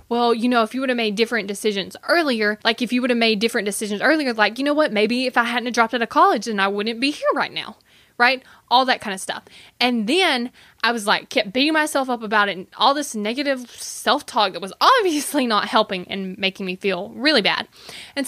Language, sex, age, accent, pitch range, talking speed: English, female, 20-39, American, 205-250 Hz, 240 wpm